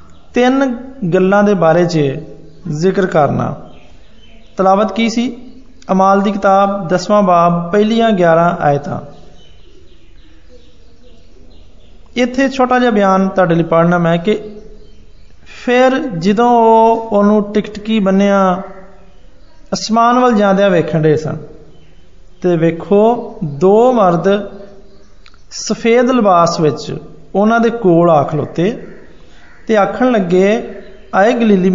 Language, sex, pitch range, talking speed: Hindi, male, 165-225 Hz, 75 wpm